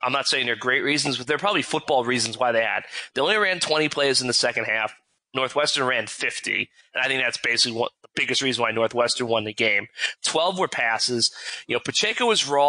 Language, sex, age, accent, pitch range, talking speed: English, male, 30-49, American, 120-150 Hz, 225 wpm